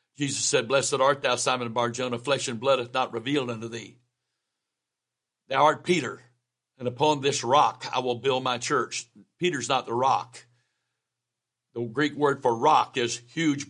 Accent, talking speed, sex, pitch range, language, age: American, 170 wpm, male, 125-165 Hz, English, 60-79